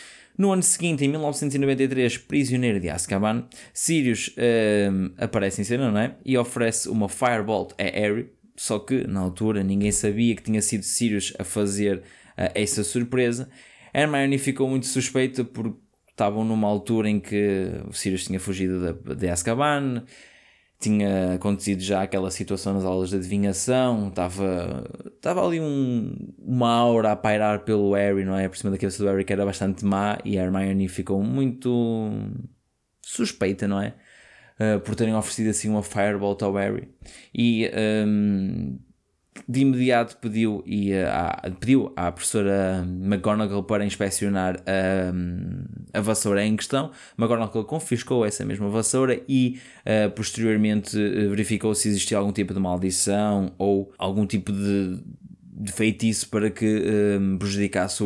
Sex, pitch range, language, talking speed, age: male, 100-115 Hz, Portuguese, 150 wpm, 20-39